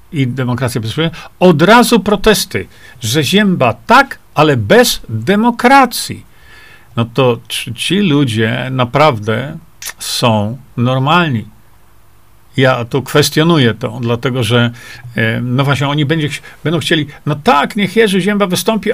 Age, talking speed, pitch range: 50-69, 120 wpm, 120-180 Hz